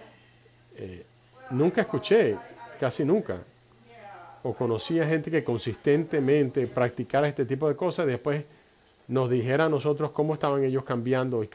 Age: 40-59